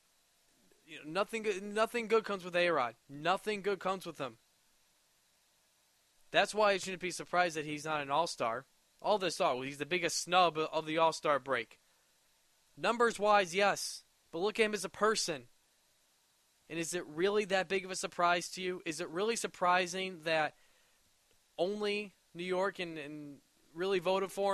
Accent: American